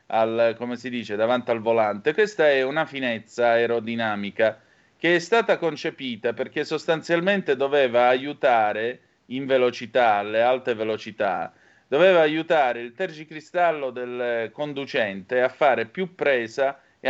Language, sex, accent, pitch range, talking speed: Italian, male, native, 120-170 Hz, 125 wpm